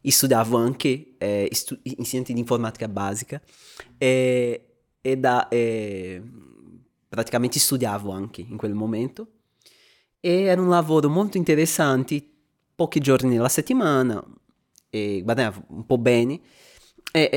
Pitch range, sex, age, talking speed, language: 120-165 Hz, male, 20-39, 120 wpm, Italian